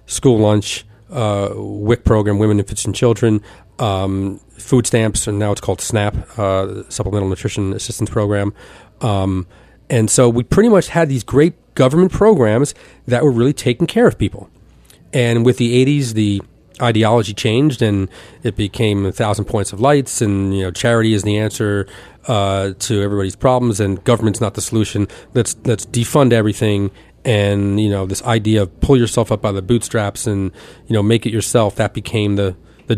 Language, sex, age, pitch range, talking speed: English, male, 40-59, 100-125 Hz, 175 wpm